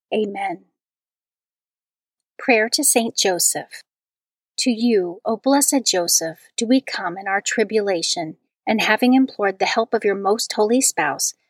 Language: English